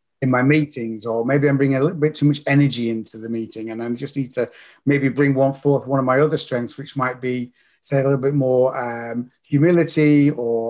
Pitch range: 120-150 Hz